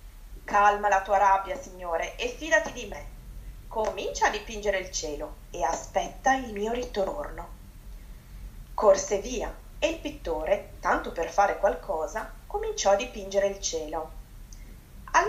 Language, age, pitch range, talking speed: Italian, 20-39, 185-260 Hz, 135 wpm